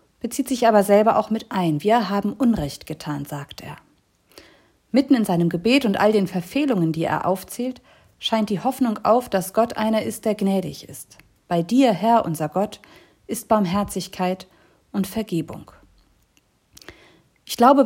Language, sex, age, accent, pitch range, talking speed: German, female, 50-69, German, 180-230 Hz, 155 wpm